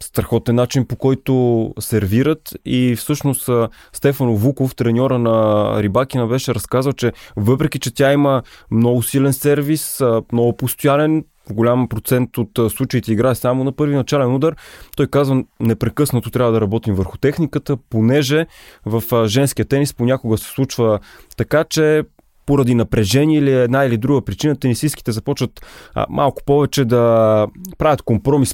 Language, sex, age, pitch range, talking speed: Bulgarian, male, 20-39, 115-140 Hz, 140 wpm